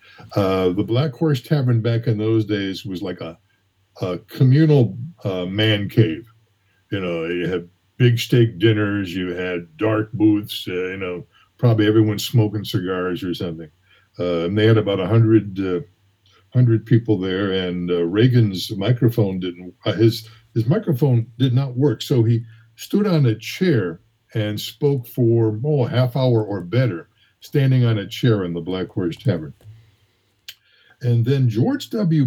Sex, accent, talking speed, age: male, American, 160 wpm, 60-79